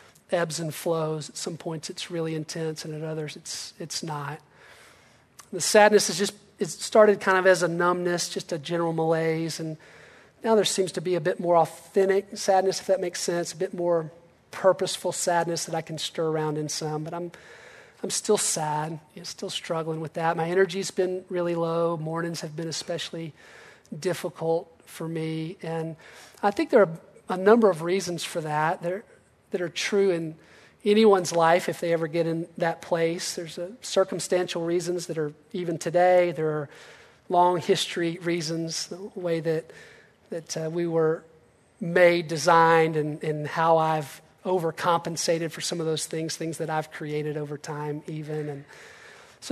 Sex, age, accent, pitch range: male, 40-59, American, 160-185 Hz